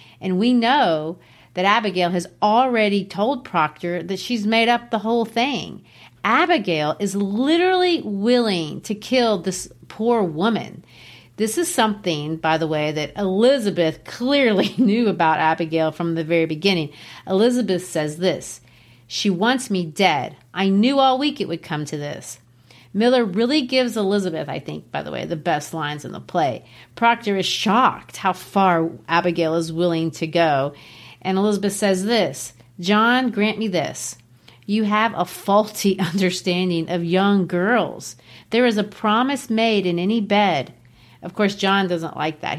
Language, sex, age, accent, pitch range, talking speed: English, female, 40-59, American, 170-225 Hz, 160 wpm